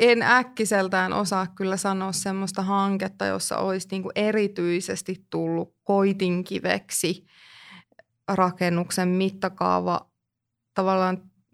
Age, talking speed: 20-39, 75 wpm